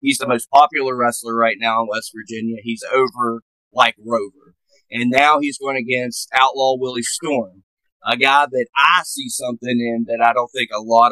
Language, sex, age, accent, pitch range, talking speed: English, male, 30-49, American, 115-140 Hz, 190 wpm